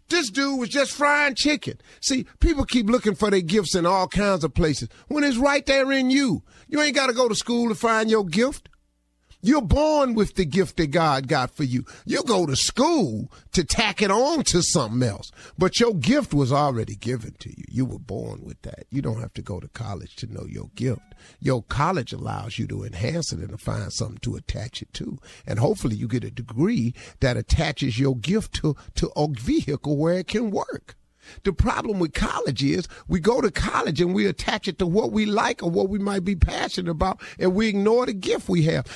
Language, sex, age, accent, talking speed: English, male, 50-69, American, 220 wpm